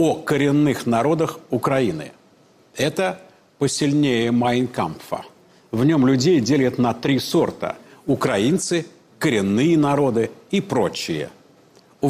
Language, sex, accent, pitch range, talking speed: Russian, male, native, 115-155 Hz, 100 wpm